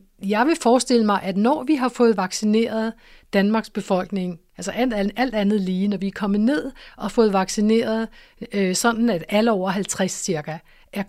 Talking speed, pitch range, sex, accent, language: 185 wpm, 190-225 Hz, female, native, Danish